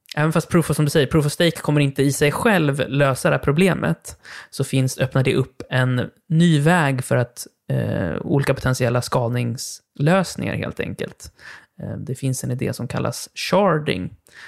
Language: Swedish